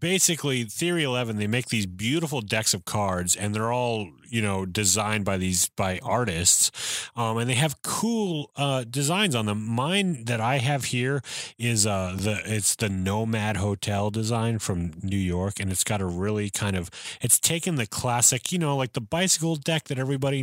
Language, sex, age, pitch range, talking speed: English, male, 30-49, 100-130 Hz, 190 wpm